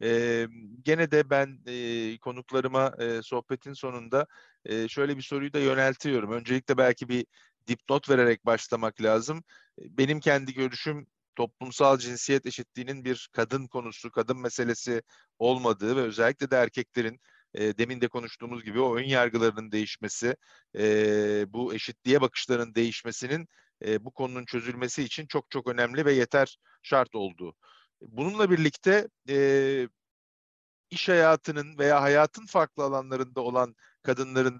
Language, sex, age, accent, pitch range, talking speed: Turkish, male, 50-69, native, 120-145 Hz, 130 wpm